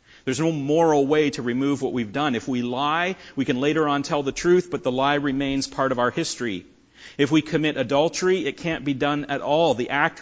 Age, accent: 40-59, American